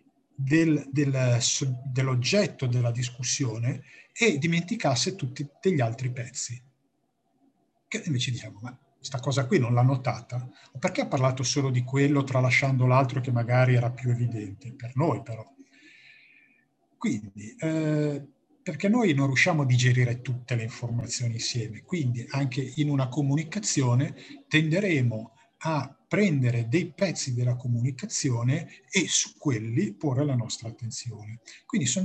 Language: Italian